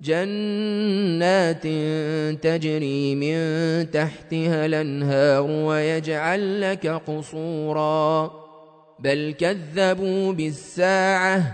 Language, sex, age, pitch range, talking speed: Arabic, male, 30-49, 165-215 Hz, 55 wpm